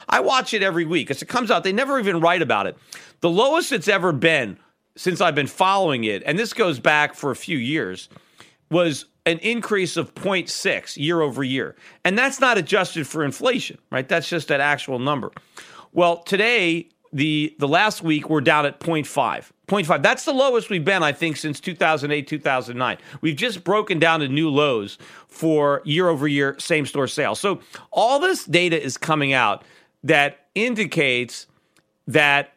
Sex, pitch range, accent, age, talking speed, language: male, 150-195 Hz, American, 40-59, 180 wpm, English